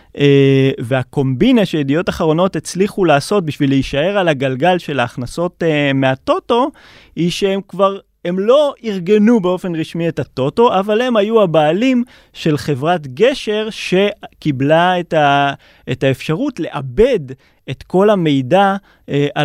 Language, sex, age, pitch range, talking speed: Hebrew, male, 20-39, 140-185 Hz, 125 wpm